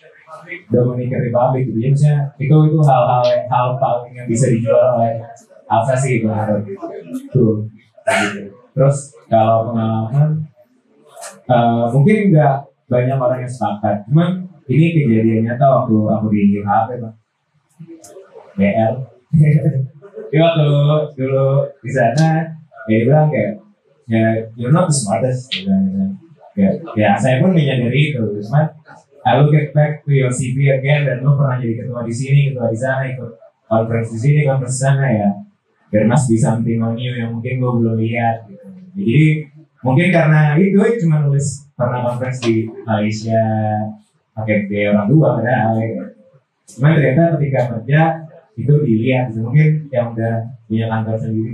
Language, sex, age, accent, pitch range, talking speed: English, male, 20-39, Indonesian, 115-150 Hz, 145 wpm